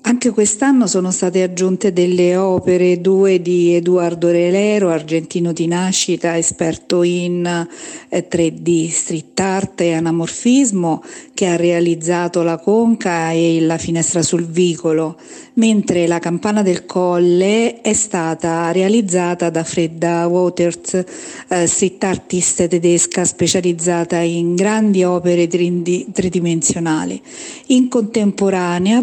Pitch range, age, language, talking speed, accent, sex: 170-200 Hz, 50-69, Italian, 105 wpm, native, female